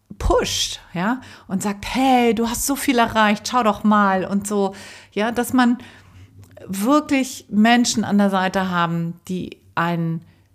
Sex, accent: female, German